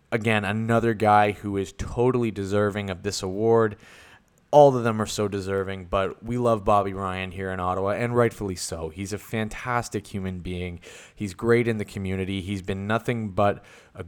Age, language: 20-39, English